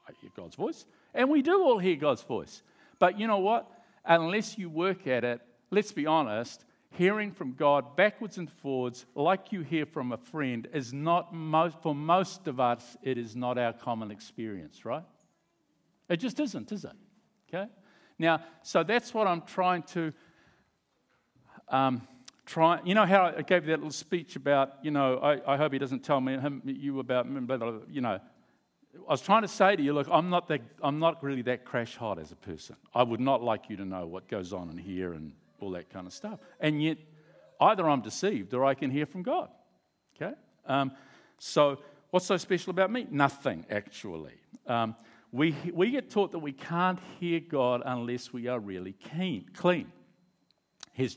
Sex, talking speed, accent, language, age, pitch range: male, 190 wpm, Australian, English, 50-69, 125-180 Hz